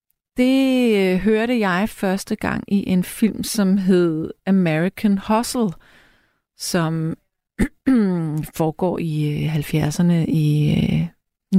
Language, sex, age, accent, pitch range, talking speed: Danish, female, 30-49, native, 175-225 Hz, 115 wpm